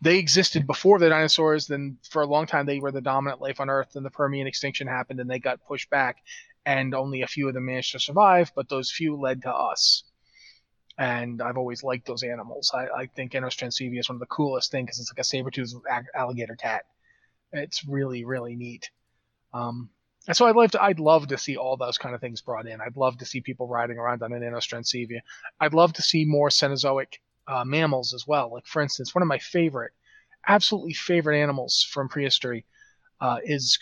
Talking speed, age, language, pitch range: 215 wpm, 30-49, English, 125-155 Hz